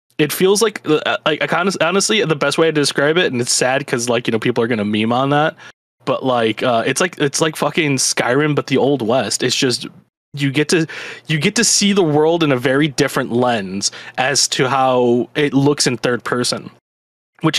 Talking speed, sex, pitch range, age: 220 wpm, male, 120-155 Hz, 20-39